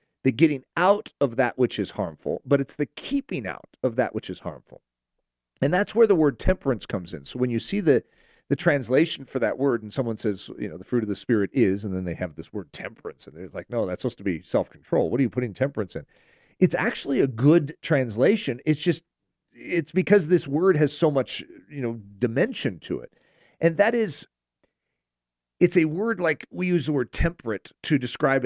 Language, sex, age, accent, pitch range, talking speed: English, male, 40-59, American, 120-165 Hz, 215 wpm